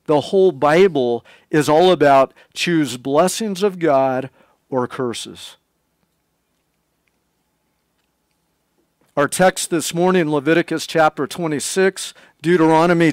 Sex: male